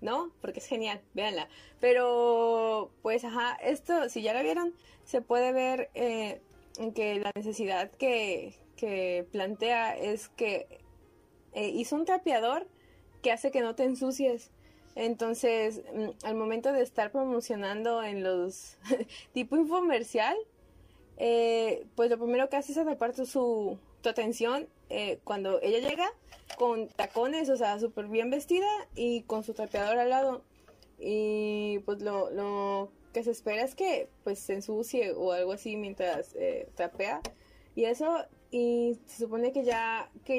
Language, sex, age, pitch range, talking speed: Spanish, female, 20-39, 210-265 Hz, 145 wpm